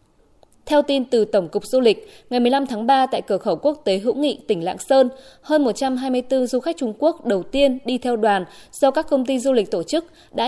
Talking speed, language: 235 wpm, Vietnamese